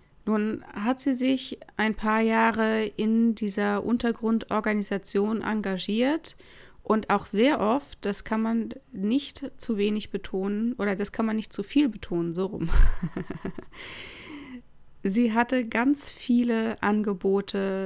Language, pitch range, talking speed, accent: German, 195-230 Hz, 125 wpm, German